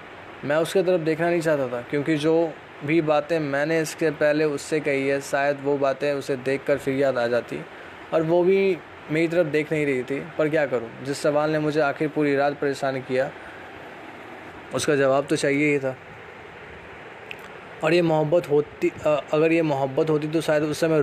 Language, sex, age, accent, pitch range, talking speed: Hindi, male, 20-39, native, 135-165 Hz, 185 wpm